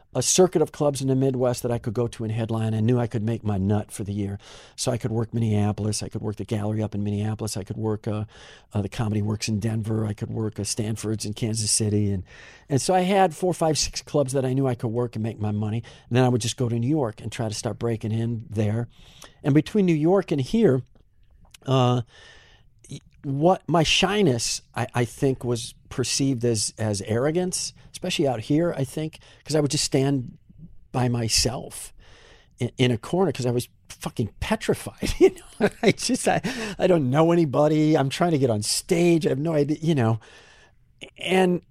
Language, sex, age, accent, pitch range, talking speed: English, male, 50-69, American, 110-150 Hz, 215 wpm